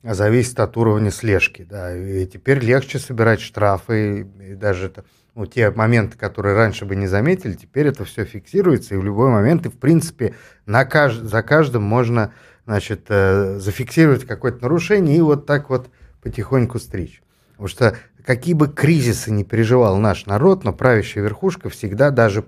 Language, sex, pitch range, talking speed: Russian, male, 100-130 Hz, 170 wpm